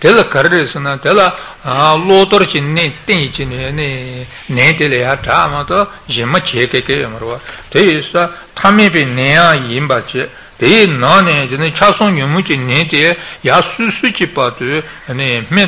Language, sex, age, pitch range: Italian, male, 60-79, 130-175 Hz